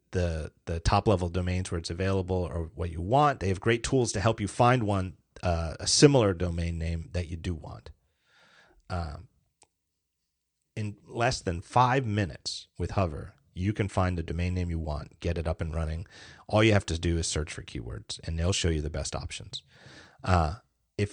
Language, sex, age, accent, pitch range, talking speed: English, male, 30-49, American, 85-110 Hz, 195 wpm